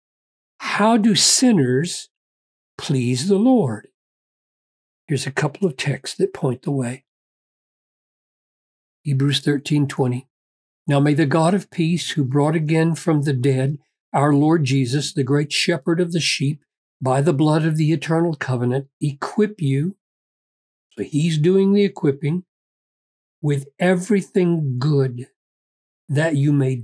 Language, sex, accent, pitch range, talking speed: English, male, American, 135-175 Hz, 130 wpm